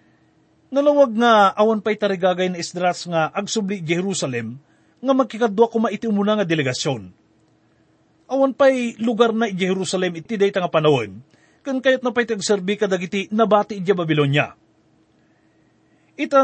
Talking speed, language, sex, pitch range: 130 wpm, English, male, 175-230 Hz